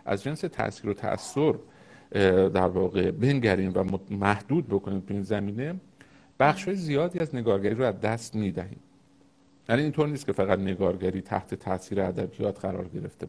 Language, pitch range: Persian, 95-140 Hz